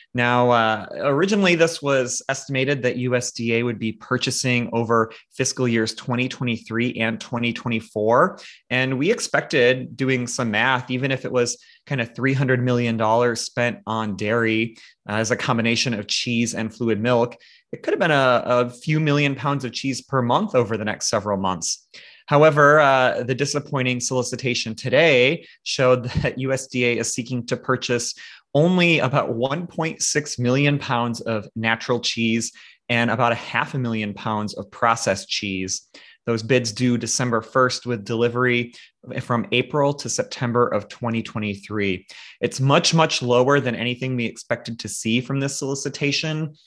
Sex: male